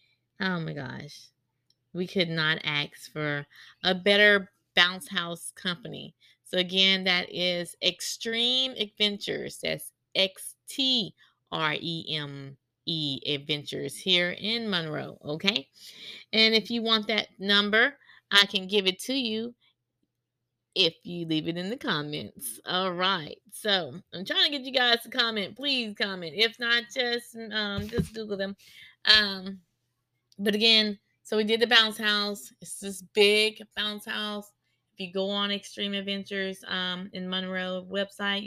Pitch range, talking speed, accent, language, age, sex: 175-220 Hz, 145 wpm, American, English, 20-39, female